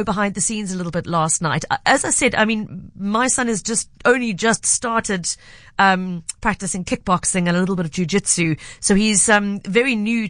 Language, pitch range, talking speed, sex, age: English, 185-230 Hz, 200 wpm, female, 40-59